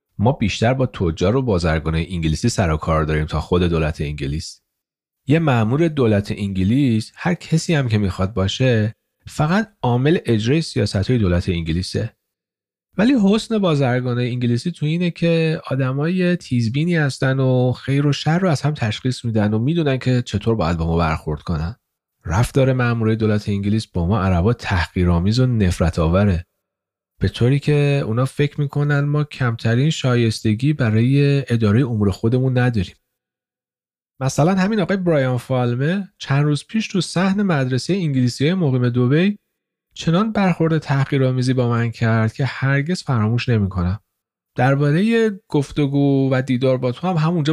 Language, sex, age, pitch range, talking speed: Persian, male, 40-59, 105-145 Hz, 150 wpm